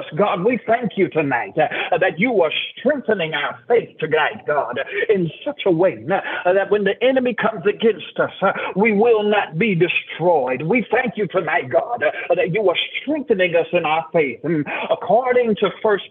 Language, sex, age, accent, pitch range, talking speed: English, male, 50-69, American, 180-220 Hz, 170 wpm